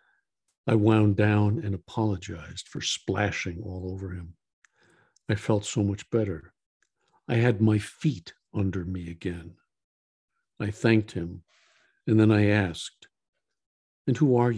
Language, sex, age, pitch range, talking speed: English, male, 60-79, 95-110 Hz, 130 wpm